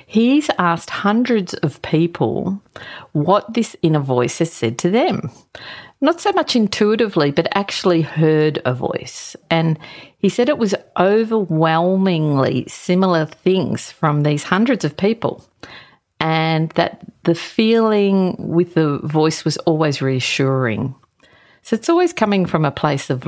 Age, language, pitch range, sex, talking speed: 50-69, English, 145-200 Hz, female, 135 wpm